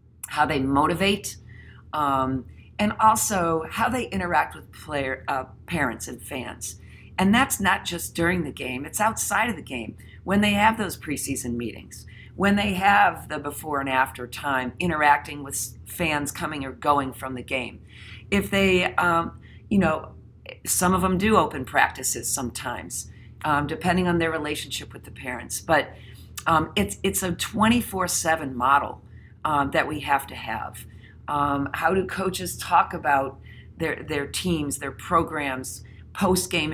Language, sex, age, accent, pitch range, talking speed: English, female, 50-69, American, 115-165 Hz, 160 wpm